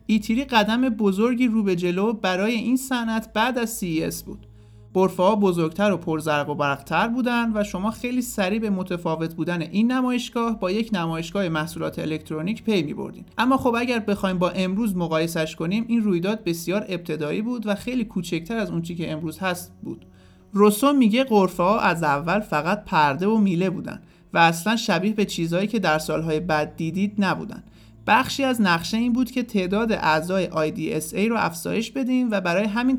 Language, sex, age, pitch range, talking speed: Persian, male, 50-69, 170-230 Hz, 175 wpm